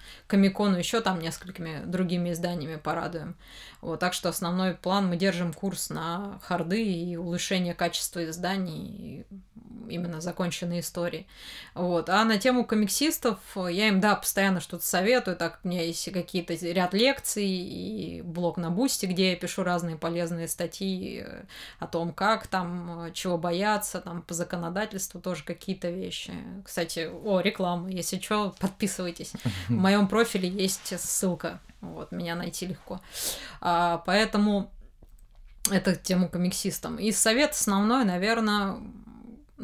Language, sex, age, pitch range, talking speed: Russian, female, 20-39, 175-205 Hz, 135 wpm